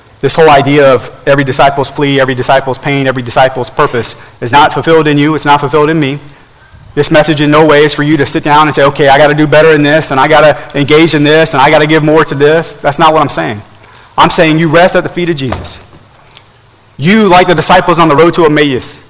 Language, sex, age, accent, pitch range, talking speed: English, male, 40-59, American, 115-150 Hz, 260 wpm